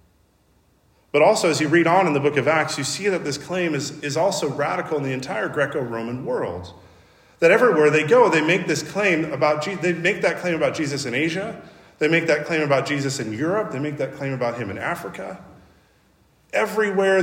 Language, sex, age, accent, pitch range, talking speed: English, male, 40-59, American, 125-170 Hz, 205 wpm